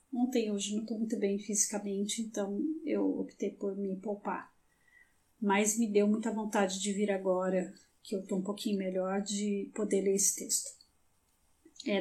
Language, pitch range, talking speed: Portuguese, 200-240 Hz, 165 wpm